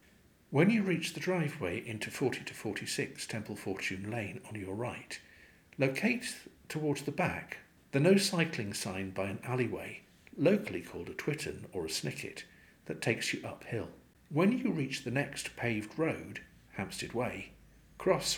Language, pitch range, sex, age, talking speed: English, 105-170 Hz, male, 50-69, 145 wpm